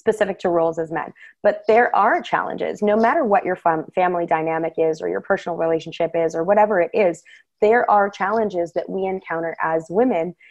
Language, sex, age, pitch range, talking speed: English, female, 20-39, 180-235 Hz, 195 wpm